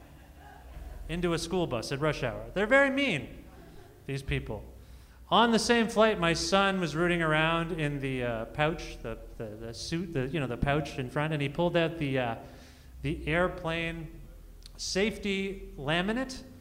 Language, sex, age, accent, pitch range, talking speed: English, male, 30-49, American, 120-180 Hz, 165 wpm